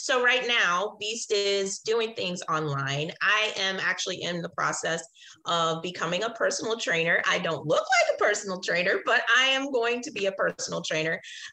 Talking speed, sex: 180 wpm, female